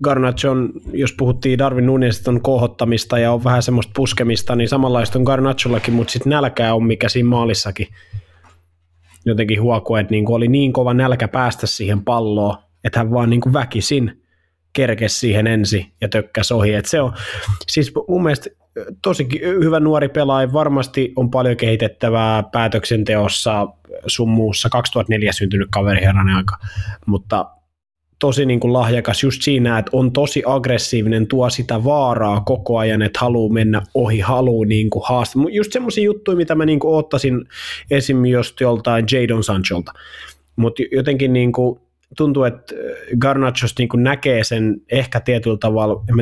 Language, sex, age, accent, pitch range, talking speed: Finnish, male, 20-39, native, 110-130 Hz, 135 wpm